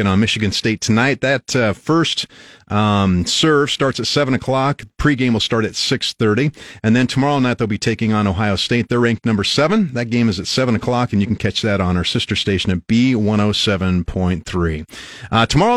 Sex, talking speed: male, 190 wpm